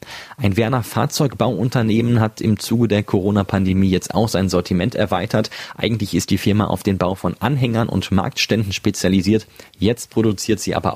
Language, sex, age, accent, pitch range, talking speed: German, male, 30-49, German, 95-115 Hz, 160 wpm